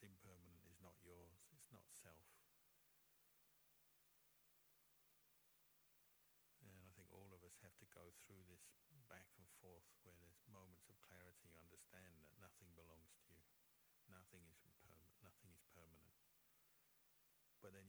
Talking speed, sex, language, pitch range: 140 wpm, male, English, 85-95 Hz